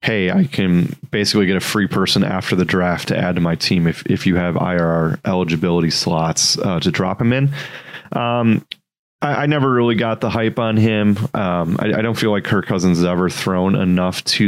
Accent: American